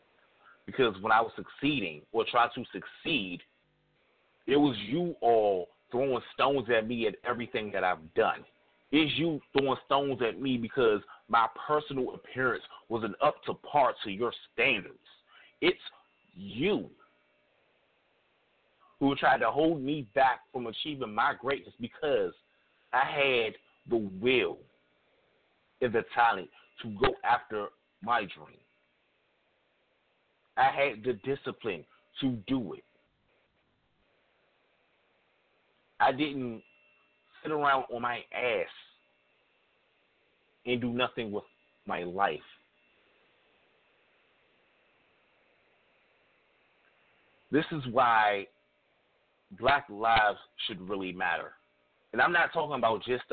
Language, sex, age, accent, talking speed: English, male, 30-49, American, 110 wpm